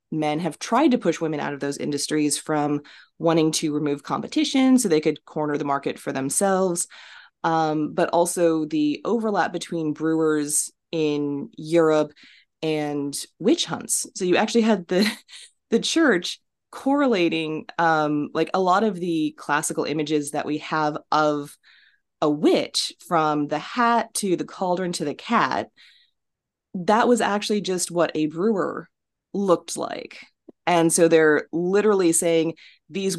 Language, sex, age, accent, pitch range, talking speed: English, female, 20-39, American, 150-190 Hz, 145 wpm